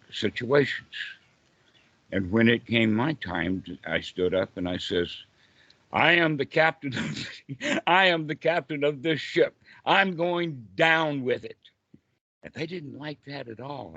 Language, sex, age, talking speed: English, male, 60-79, 155 wpm